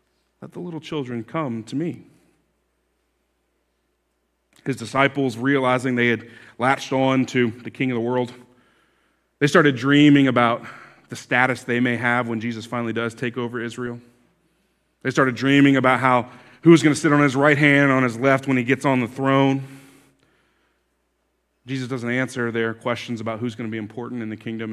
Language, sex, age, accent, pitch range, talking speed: English, male, 30-49, American, 115-150 Hz, 175 wpm